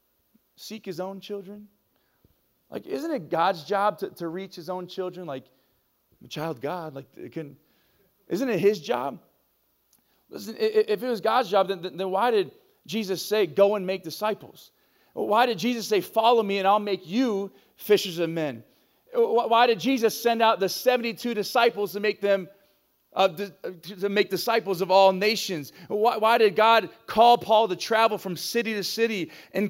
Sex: male